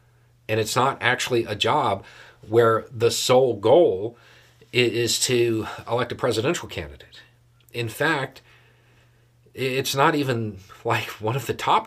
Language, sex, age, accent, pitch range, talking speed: English, male, 40-59, American, 110-120 Hz, 130 wpm